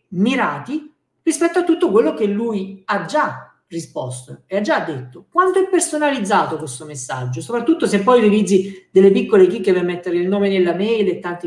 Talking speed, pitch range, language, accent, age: 180 wpm, 160-215 Hz, Italian, native, 50-69